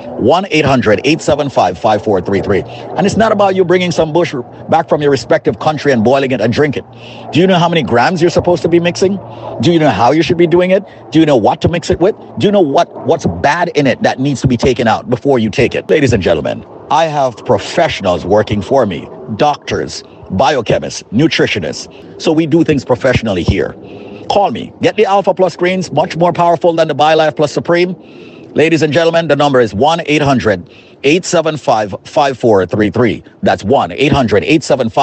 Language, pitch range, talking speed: English, 120-170 Hz, 185 wpm